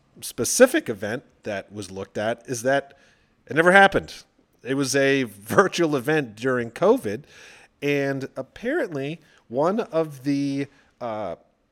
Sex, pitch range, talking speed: male, 115-145 Hz, 125 wpm